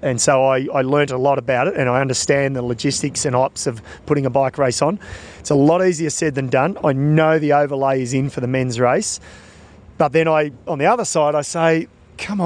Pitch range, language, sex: 130-160 Hz, English, male